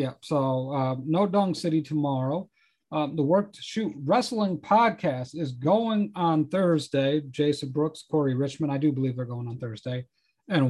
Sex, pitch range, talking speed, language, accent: male, 150-200 Hz, 170 wpm, English, American